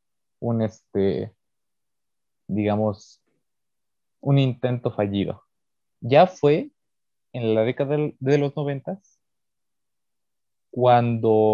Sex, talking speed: male, 70 wpm